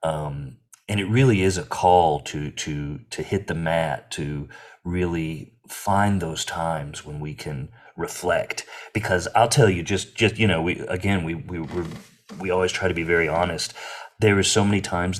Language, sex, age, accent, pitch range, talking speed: English, male, 30-49, American, 80-100 Hz, 185 wpm